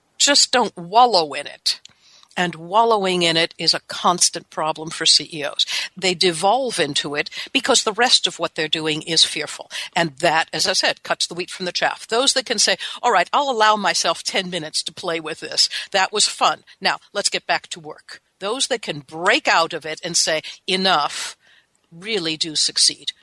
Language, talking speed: English, 195 wpm